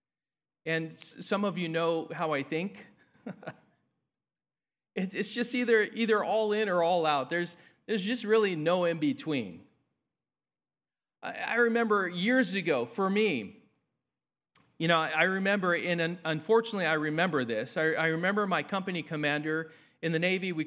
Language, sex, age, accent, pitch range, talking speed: English, male, 40-59, American, 150-205 Hz, 140 wpm